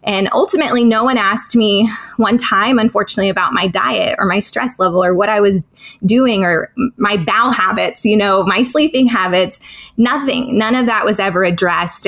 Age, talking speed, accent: 20-39, 185 wpm, American